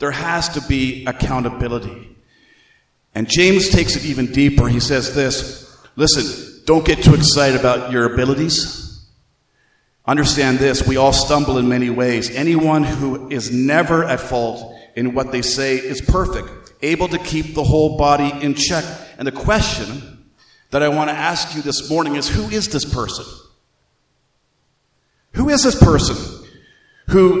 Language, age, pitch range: English, 50-69, 125-155 Hz